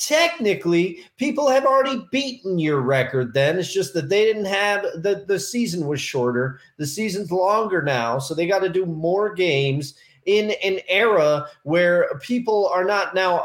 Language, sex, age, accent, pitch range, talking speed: English, male, 30-49, American, 150-215 Hz, 165 wpm